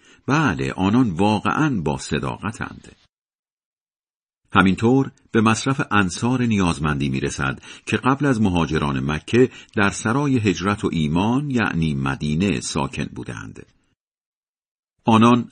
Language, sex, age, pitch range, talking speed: Persian, male, 50-69, 75-115 Hz, 100 wpm